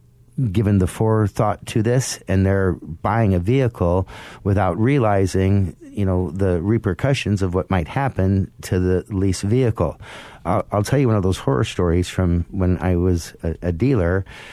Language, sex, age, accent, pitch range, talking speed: English, male, 50-69, American, 90-115 Hz, 165 wpm